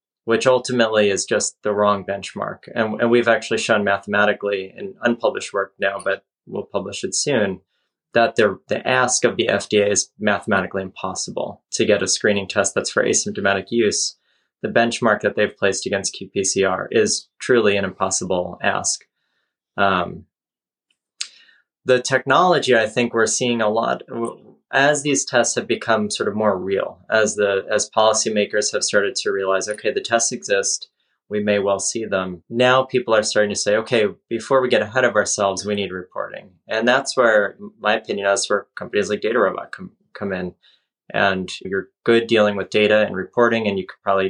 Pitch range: 100-120 Hz